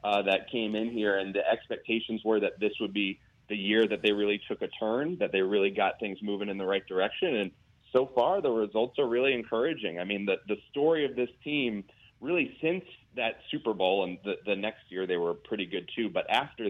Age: 30-49